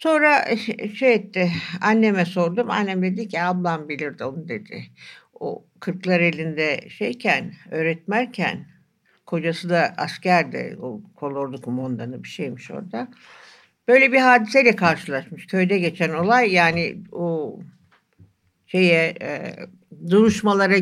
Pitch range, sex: 160-225 Hz, female